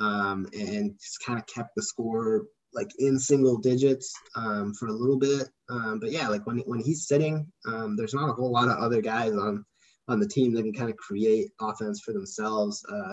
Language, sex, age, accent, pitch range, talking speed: English, male, 20-39, American, 105-145 Hz, 215 wpm